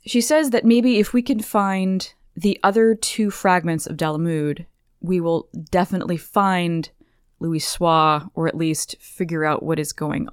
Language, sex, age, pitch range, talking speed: English, female, 20-39, 160-205 Hz, 165 wpm